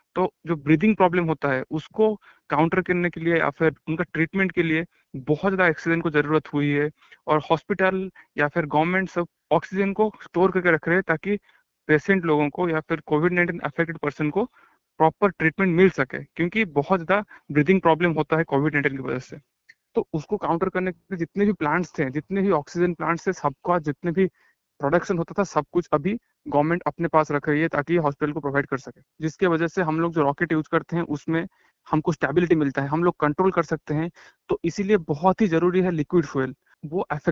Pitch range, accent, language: 150-180 Hz, native, Hindi